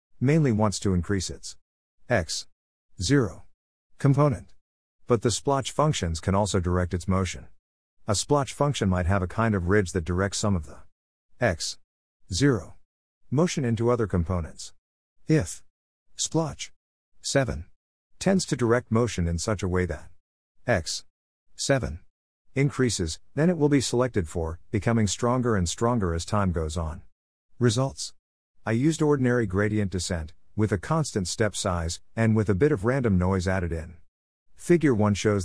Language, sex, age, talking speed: English, male, 50-69, 145 wpm